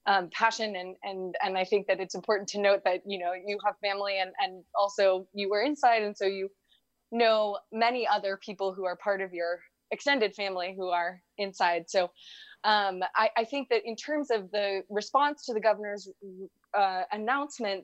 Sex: female